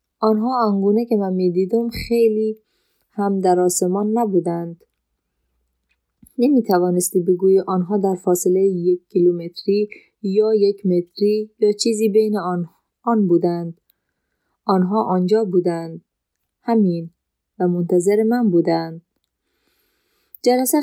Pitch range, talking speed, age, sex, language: 180-210 Hz, 100 wpm, 30-49, female, Persian